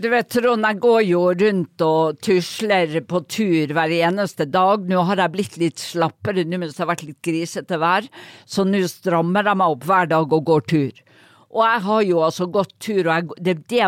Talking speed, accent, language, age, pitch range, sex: 200 wpm, Swedish, English, 50-69, 170-225 Hz, female